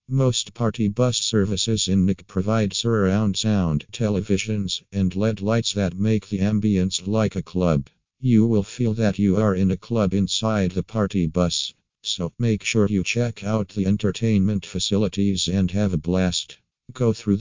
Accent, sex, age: American, male, 50-69